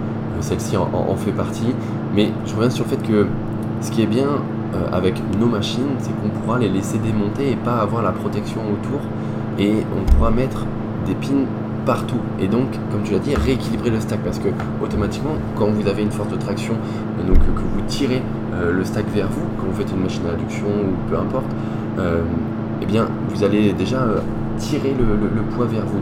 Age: 20-39